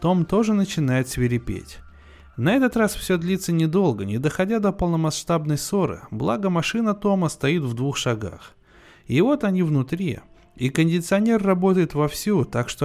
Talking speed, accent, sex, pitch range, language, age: 150 wpm, native, male, 120-175 Hz, Russian, 20-39